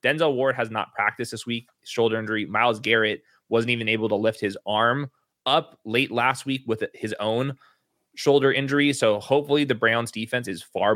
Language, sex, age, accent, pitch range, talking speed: English, male, 20-39, American, 110-125 Hz, 185 wpm